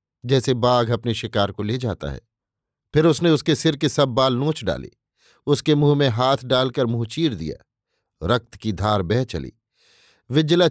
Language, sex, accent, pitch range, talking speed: Hindi, male, native, 115-145 Hz, 175 wpm